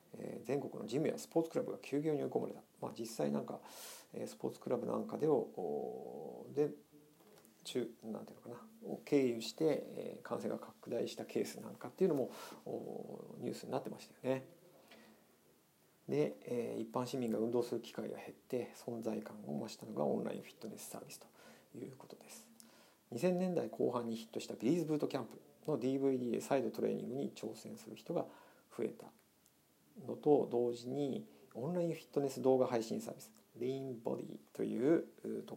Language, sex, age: Japanese, male, 50-69